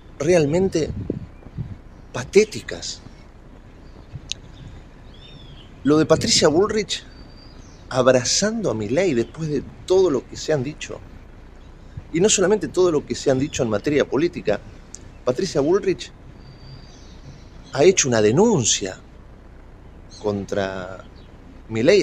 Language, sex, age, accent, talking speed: Spanish, male, 40-59, Argentinian, 100 wpm